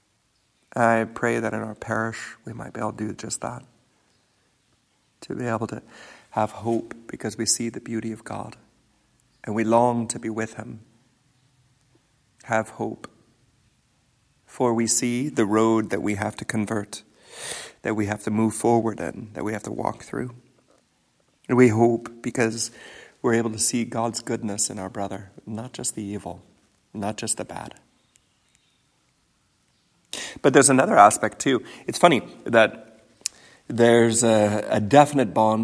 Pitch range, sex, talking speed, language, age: 105-120 Hz, male, 155 wpm, English, 50-69